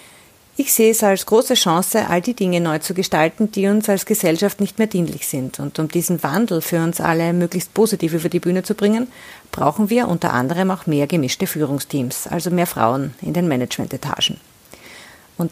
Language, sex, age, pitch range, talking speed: German, female, 40-59, 170-215 Hz, 190 wpm